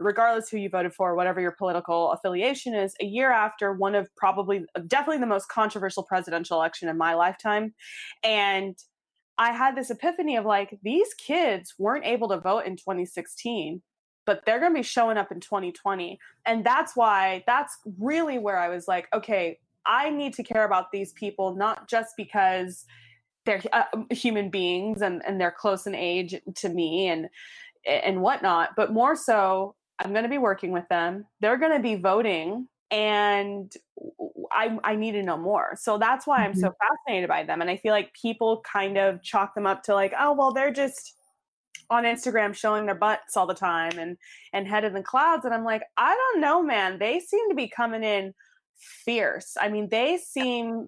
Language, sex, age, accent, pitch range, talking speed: English, female, 20-39, American, 190-235 Hz, 190 wpm